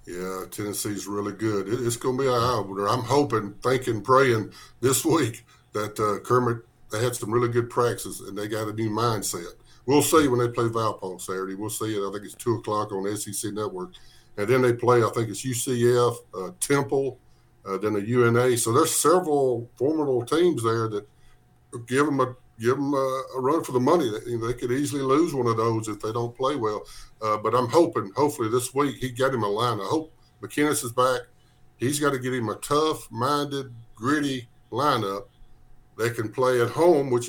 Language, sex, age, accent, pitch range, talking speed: English, male, 50-69, American, 110-130 Hz, 200 wpm